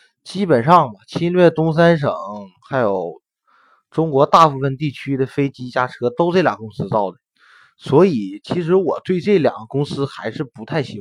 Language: Chinese